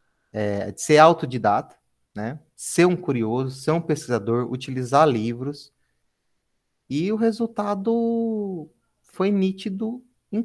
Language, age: Portuguese, 30-49